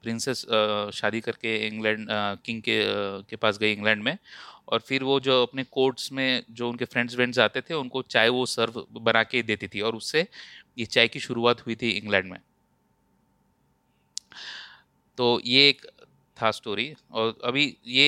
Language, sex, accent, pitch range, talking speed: Hindi, male, native, 110-130 Hz, 170 wpm